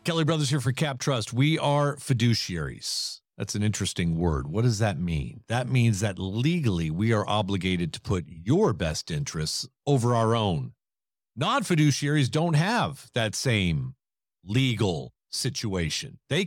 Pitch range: 105-150 Hz